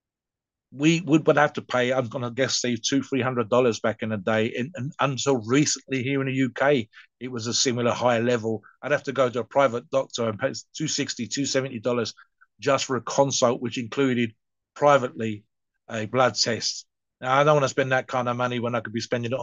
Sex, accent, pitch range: male, British, 120-140 Hz